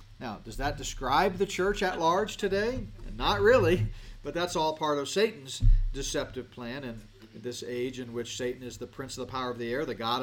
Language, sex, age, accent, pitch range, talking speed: English, male, 40-59, American, 105-160 Hz, 210 wpm